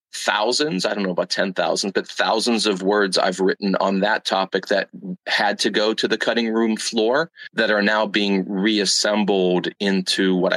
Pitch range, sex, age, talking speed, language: 90-110 Hz, male, 30-49, 175 wpm, English